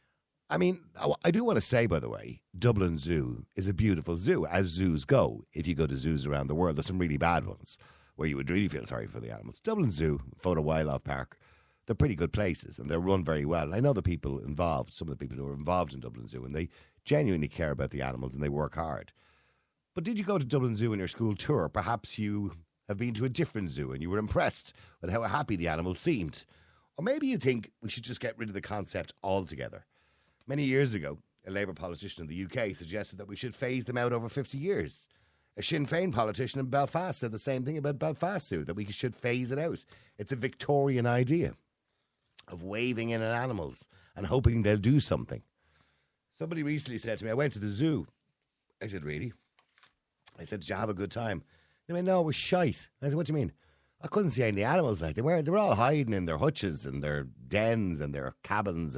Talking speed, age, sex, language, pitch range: 235 wpm, 50-69, male, English, 80-130 Hz